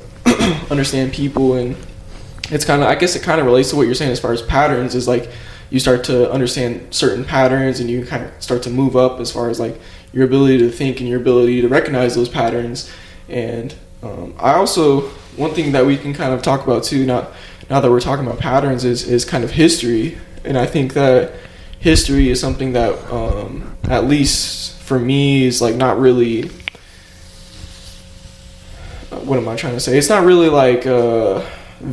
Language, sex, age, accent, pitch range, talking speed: English, male, 20-39, American, 115-135 Hz, 195 wpm